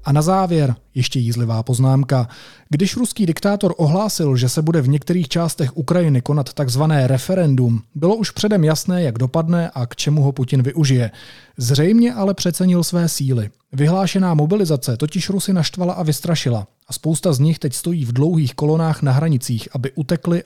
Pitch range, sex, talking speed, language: 130-170 Hz, male, 165 wpm, Czech